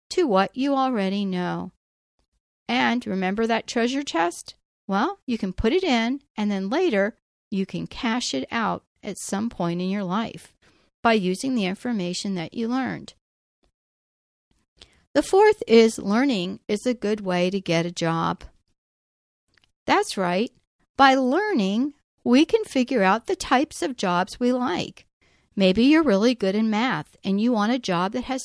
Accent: American